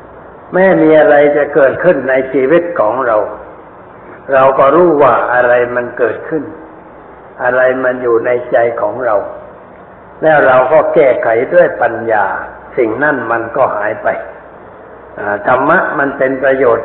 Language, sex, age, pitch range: Thai, male, 60-79, 125-160 Hz